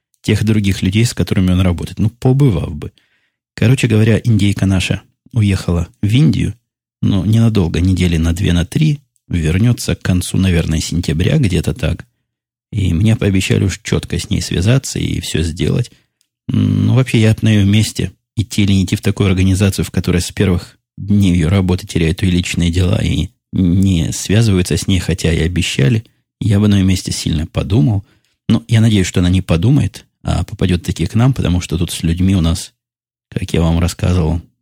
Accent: native